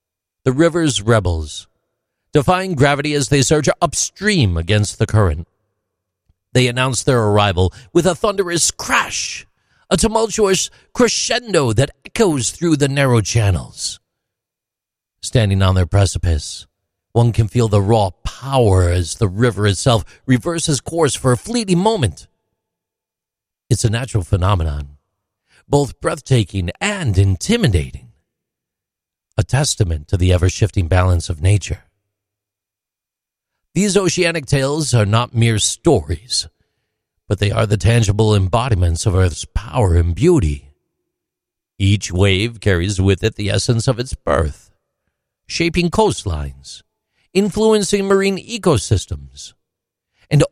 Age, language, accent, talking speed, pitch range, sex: 50-69, English, American, 120 wpm, 95-145 Hz, male